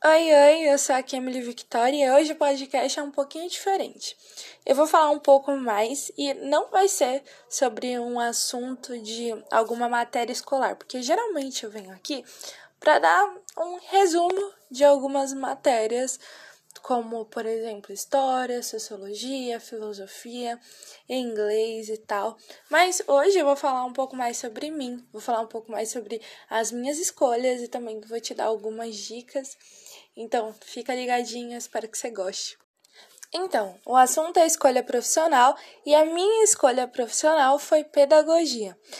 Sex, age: female, 20-39